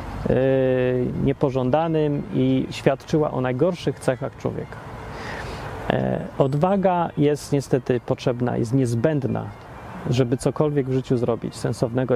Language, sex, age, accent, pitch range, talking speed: Polish, male, 30-49, native, 120-150 Hz, 95 wpm